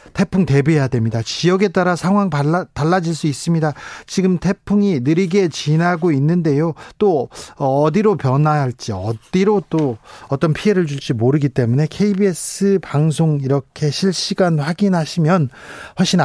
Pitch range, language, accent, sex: 135-175 Hz, Korean, native, male